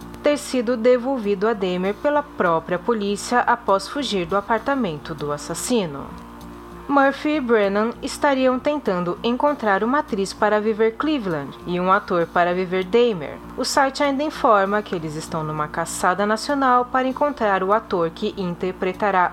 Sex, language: female, Portuguese